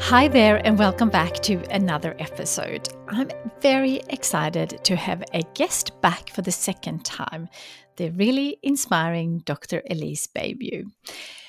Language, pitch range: English, 160-215 Hz